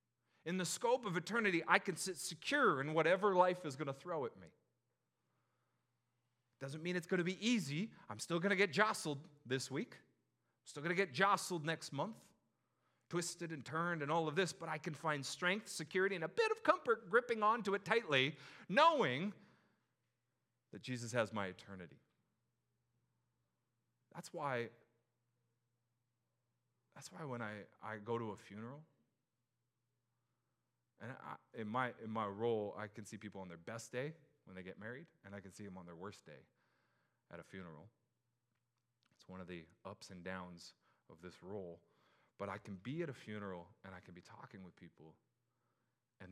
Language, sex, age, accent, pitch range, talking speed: English, male, 30-49, American, 105-160 Hz, 175 wpm